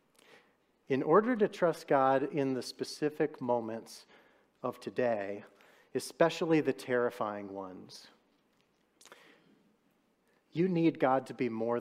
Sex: male